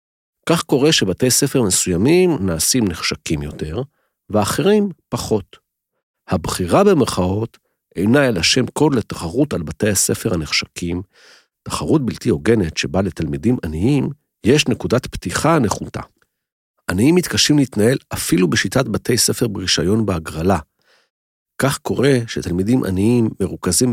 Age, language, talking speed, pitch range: 50-69, Hebrew, 115 wpm, 85-125 Hz